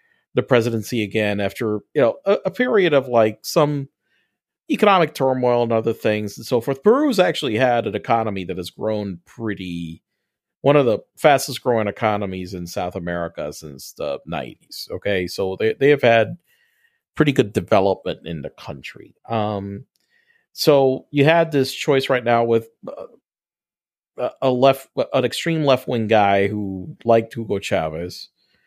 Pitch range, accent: 105-145 Hz, American